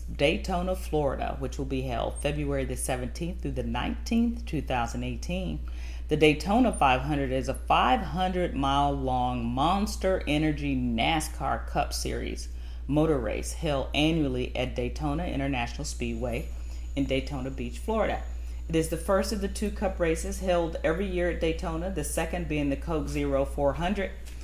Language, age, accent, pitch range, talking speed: English, 40-59, American, 120-165 Hz, 140 wpm